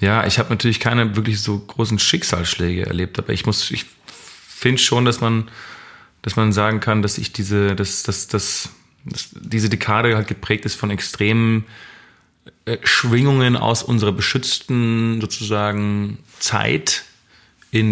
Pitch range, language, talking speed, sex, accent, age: 90-110 Hz, German, 145 wpm, male, German, 30-49